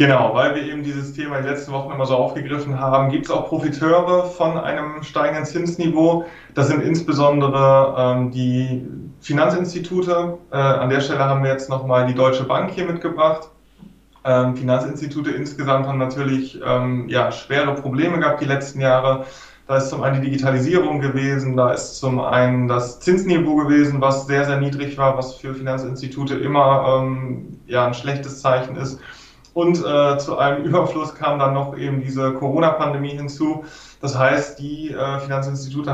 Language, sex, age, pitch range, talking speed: German, male, 20-39, 130-150 Hz, 165 wpm